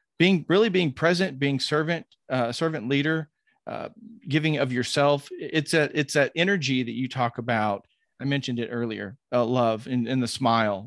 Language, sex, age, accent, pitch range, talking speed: English, male, 40-59, American, 120-150 Hz, 175 wpm